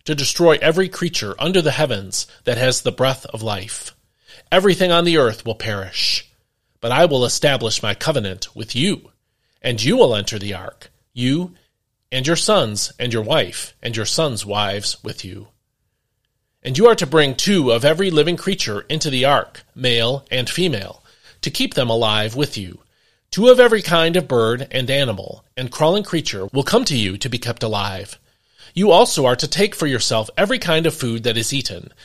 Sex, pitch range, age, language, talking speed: male, 110-155 Hz, 40-59, English, 190 wpm